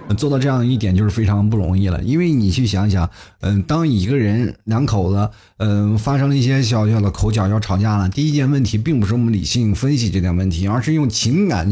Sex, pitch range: male, 95-125 Hz